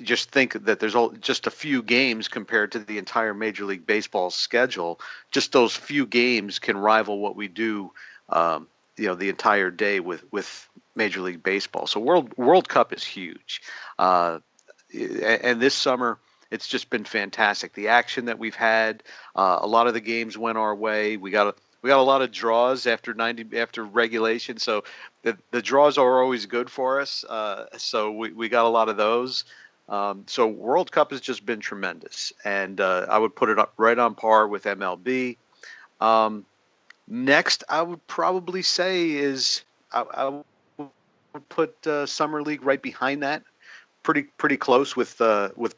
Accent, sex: American, male